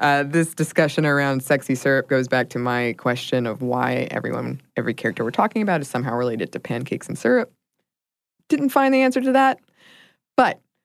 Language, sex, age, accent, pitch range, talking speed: English, female, 20-39, American, 135-175 Hz, 185 wpm